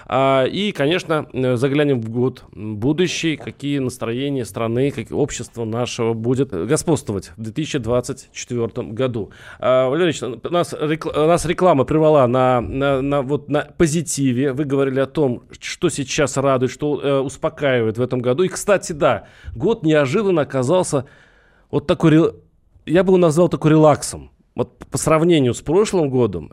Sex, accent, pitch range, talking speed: male, native, 130-165 Hz, 145 wpm